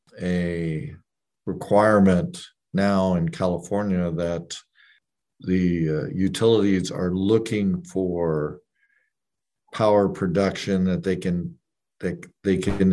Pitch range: 85-100 Hz